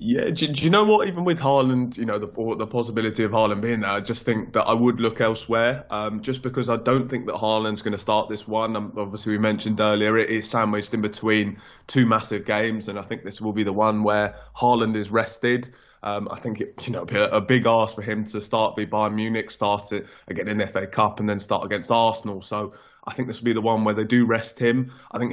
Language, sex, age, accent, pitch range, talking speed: English, male, 20-39, British, 105-120 Hz, 260 wpm